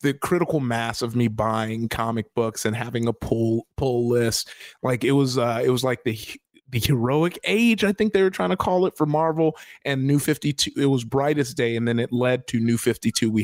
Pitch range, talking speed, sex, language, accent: 115-140 Hz, 230 wpm, male, English, American